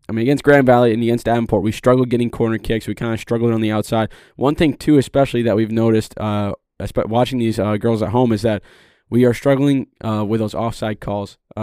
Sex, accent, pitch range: male, American, 110-125 Hz